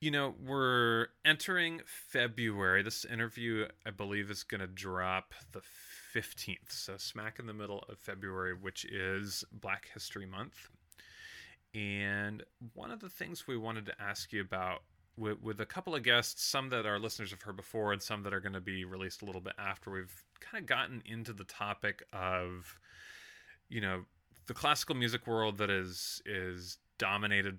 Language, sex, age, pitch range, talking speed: English, male, 30-49, 95-115 Hz, 180 wpm